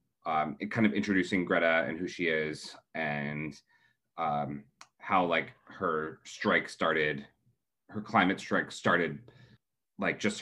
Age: 30-49